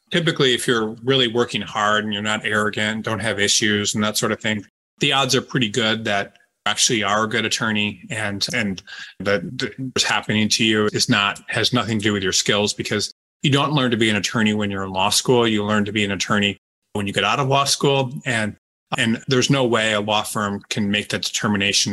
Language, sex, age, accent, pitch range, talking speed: English, male, 30-49, American, 100-120 Hz, 230 wpm